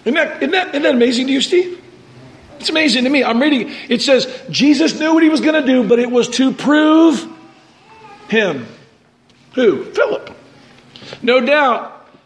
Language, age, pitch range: English, 50-69, 210-255 Hz